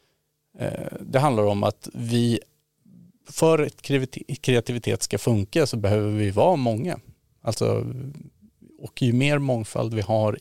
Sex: male